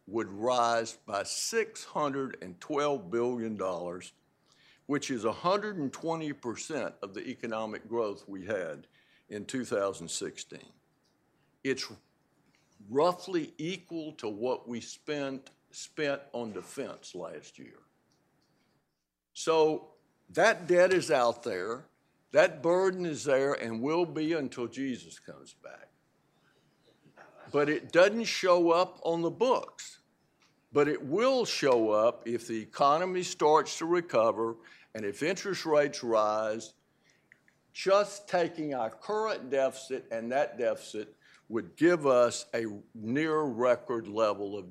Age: 60-79